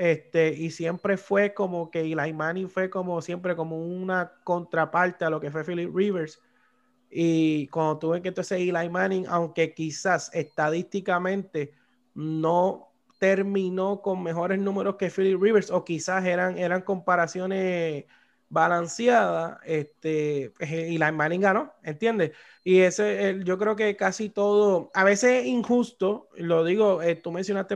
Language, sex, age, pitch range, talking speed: Spanish, male, 30-49, 165-205 Hz, 145 wpm